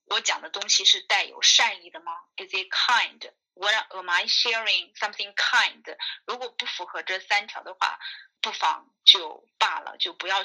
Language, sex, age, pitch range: Chinese, female, 20-39, 190-310 Hz